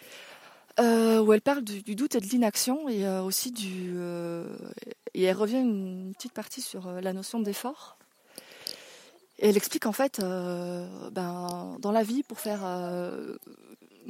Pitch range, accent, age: 200-250 Hz, French, 30-49